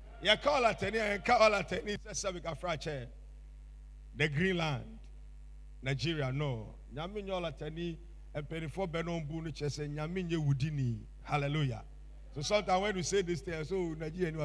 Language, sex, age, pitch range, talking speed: English, male, 50-69, 110-170 Hz, 150 wpm